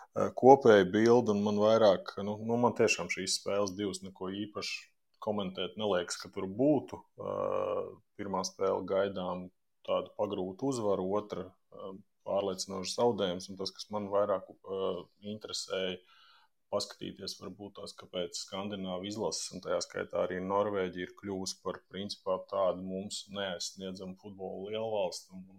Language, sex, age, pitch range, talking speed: English, male, 20-39, 95-105 Hz, 125 wpm